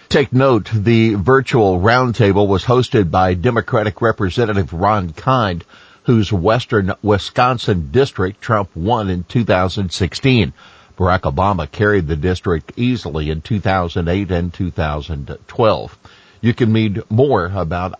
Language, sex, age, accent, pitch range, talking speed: English, male, 50-69, American, 90-110 Hz, 115 wpm